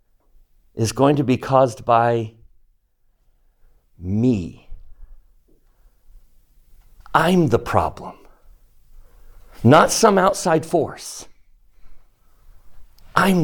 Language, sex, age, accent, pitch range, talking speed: English, male, 60-79, American, 115-160 Hz, 65 wpm